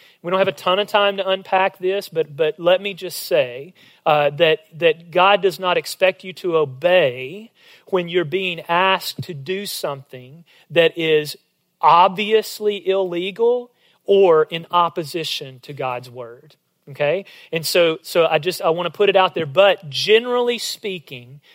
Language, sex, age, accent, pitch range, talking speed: English, male, 40-59, American, 160-205 Hz, 165 wpm